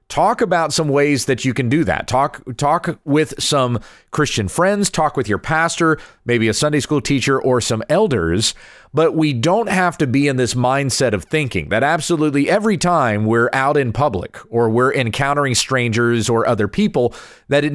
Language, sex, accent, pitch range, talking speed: English, male, American, 115-150 Hz, 185 wpm